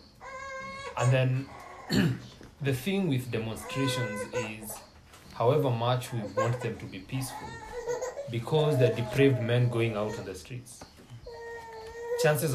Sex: male